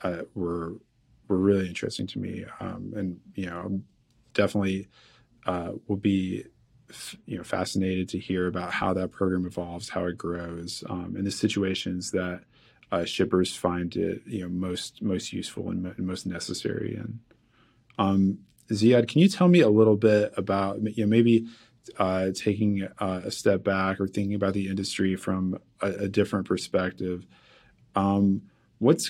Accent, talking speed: American, 160 wpm